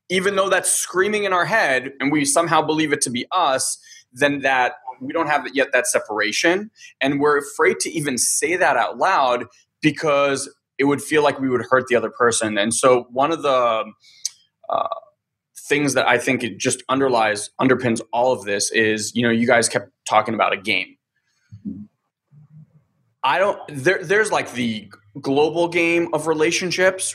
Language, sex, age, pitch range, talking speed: English, male, 20-39, 125-185 Hz, 175 wpm